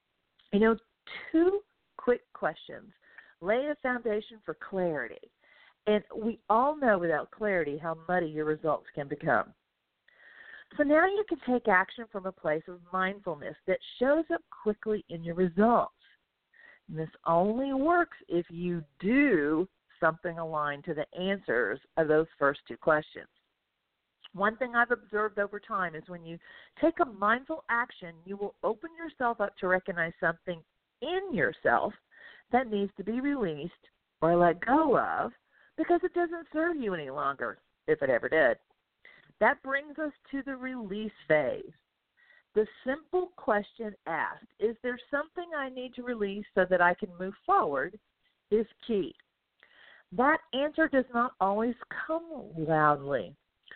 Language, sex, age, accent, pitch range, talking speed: English, female, 50-69, American, 175-285 Hz, 150 wpm